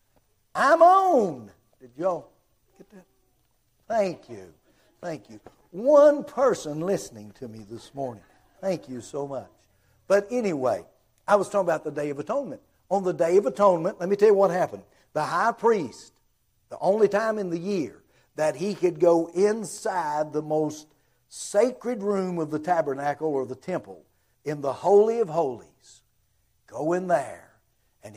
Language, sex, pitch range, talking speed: English, male, 130-185 Hz, 160 wpm